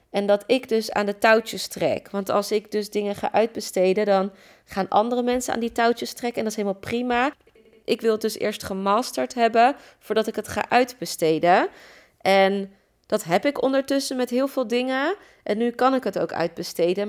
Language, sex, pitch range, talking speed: Dutch, female, 195-235 Hz, 195 wpm